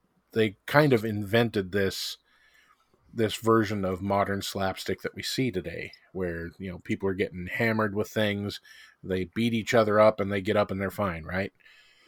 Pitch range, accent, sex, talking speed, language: 95-115 Hz, American, male, 180 wpm, English